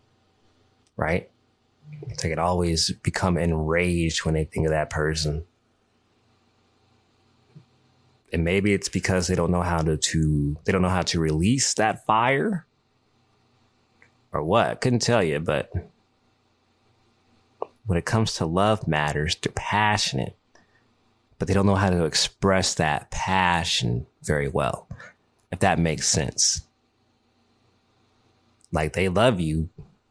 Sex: male